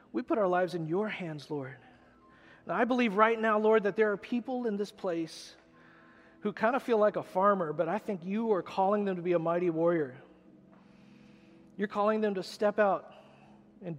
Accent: American